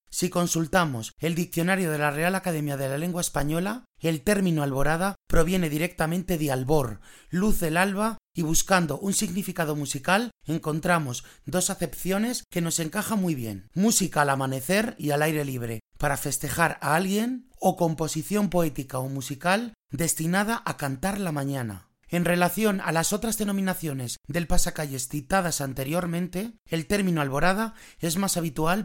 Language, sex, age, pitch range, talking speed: Spanish, male, 30-49, 145-190 Hz, 150 wpm